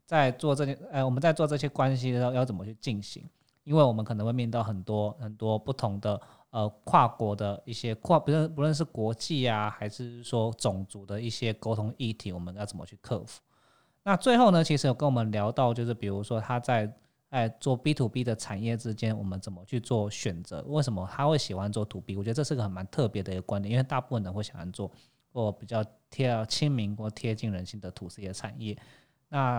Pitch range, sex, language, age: 105-125 Hz, male, Chinese, 20-39